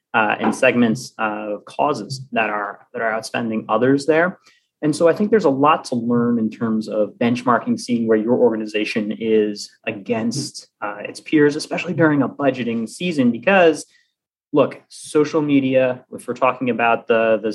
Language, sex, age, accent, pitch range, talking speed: English, male, 20-39, American, 110-145 Hz, 170 wpm